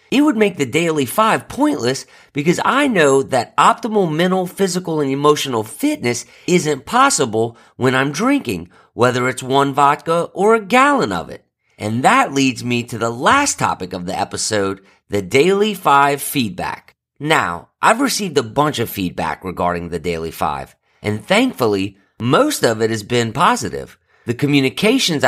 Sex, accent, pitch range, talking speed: male, American, 100-155 Hz, 160 wpm